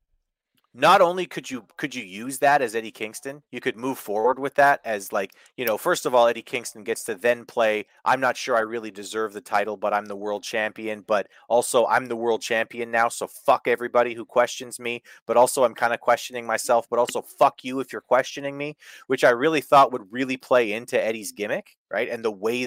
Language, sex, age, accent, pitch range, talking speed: English, male, 30-49, American, 110-145 Hz, 225 wpm